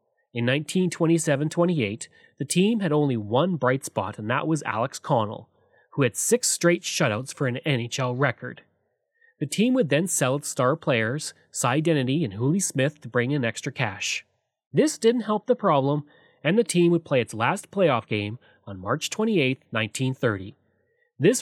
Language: English